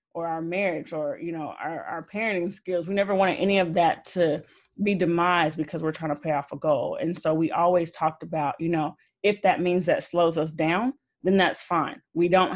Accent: American